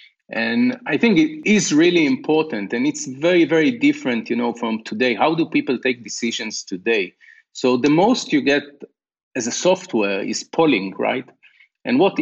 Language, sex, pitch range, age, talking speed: English, male, 120-170 Hz, 40-59, 170 wpm